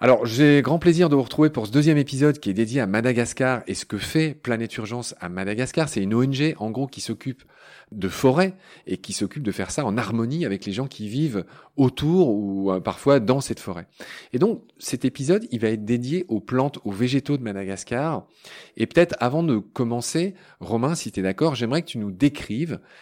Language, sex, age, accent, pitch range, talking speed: French, male, 30-49, French, 100-145 Hz, 210 wpm